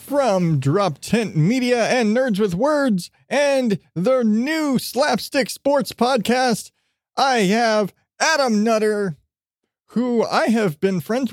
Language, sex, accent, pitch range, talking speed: English, male, American, 155-220 Hz, 120 wpm